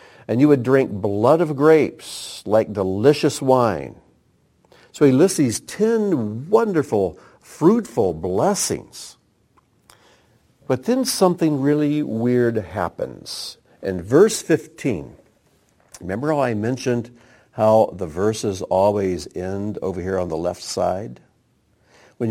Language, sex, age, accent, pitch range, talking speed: English, male, 60-79, American, 90-130 Hz, 115 wpm